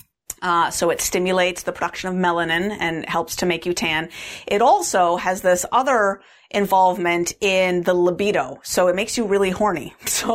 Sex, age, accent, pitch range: female, 40-59, American, 170-215 Hz